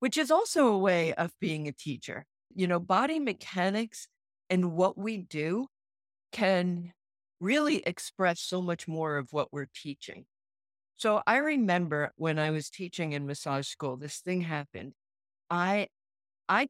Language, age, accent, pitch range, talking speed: English, 50-69, American, 145-195 Hz, 150 wpm